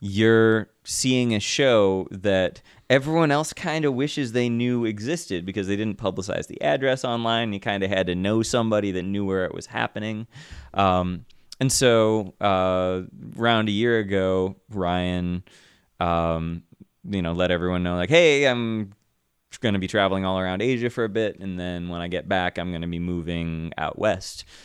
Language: English